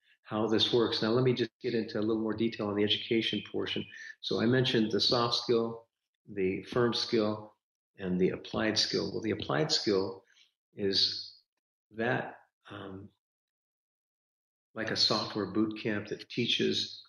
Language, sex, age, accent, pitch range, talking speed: English, male, 50-69, American, 105-115 Hz, 155 wpm